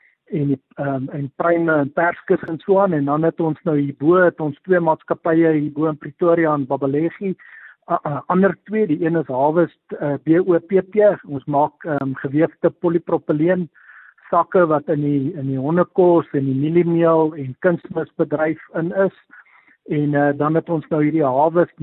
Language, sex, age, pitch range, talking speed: English, male, 50-69, 150-180 Hz, 160 wpm